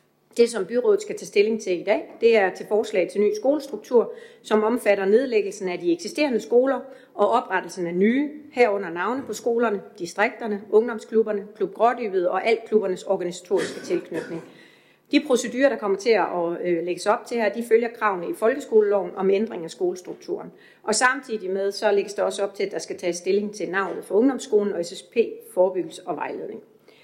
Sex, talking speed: female, 180 wpm